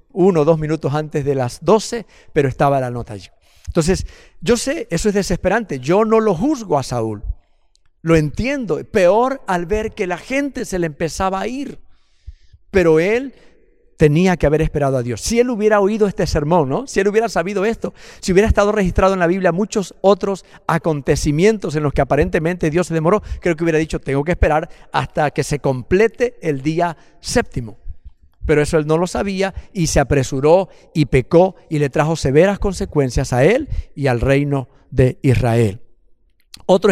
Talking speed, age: 180 wpm, 50-69